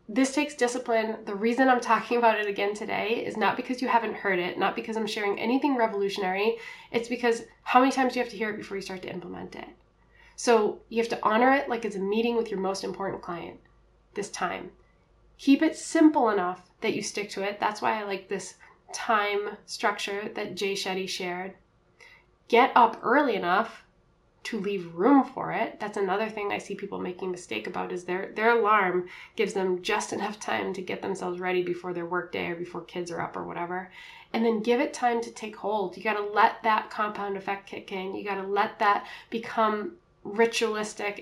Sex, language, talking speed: female, English, 210 wpm